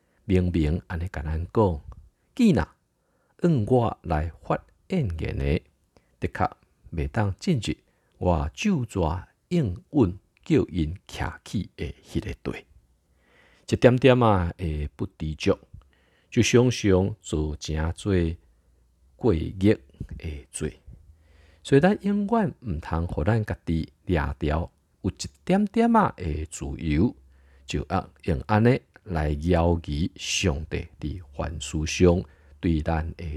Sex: male